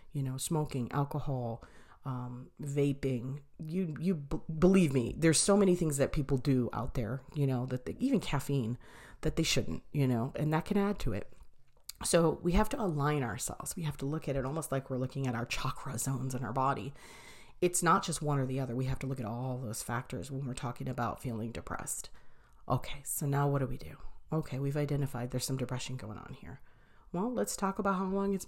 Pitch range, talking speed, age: 130-155 Hz, 220 wpm, 40-59